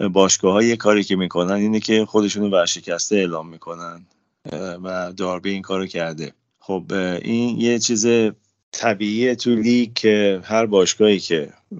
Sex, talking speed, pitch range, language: male, 130 wpm, 90-110 Hz, Persian